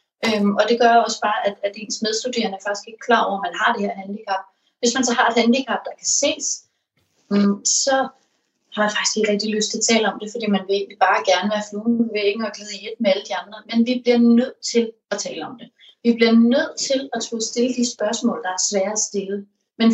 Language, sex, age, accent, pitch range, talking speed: Danish, female, 30-49, native, 195-235 Hz, 250 wpm